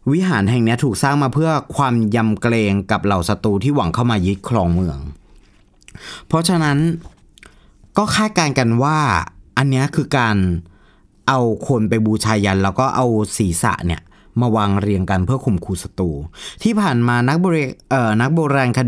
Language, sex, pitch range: Thai, male, 100-135 Hz